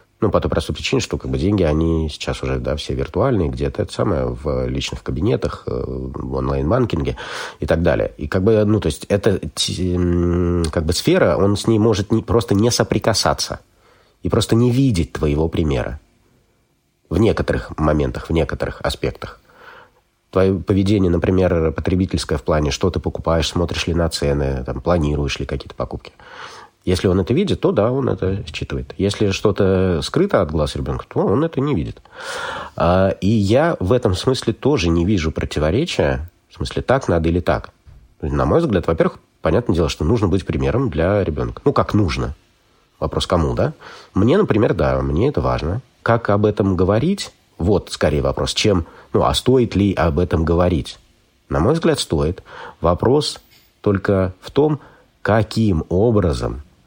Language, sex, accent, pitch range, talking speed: Russian, male, native, 75-105 Hz, 160 wpm